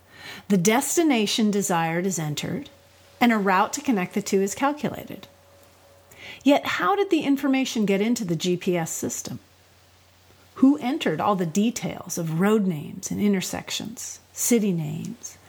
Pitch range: 145-225 Hz